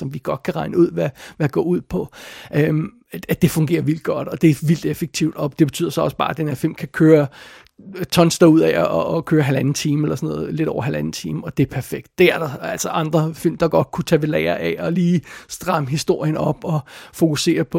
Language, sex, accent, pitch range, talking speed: Danish, male, native, 155-180 Hz, 250 wpm